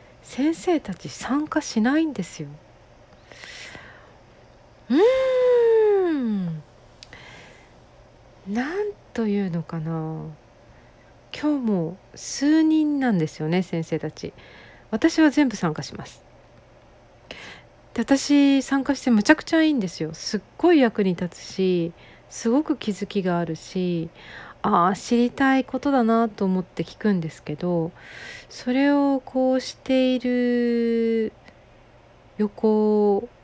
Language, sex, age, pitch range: Japanese, female, 40-59, 170-265 Hz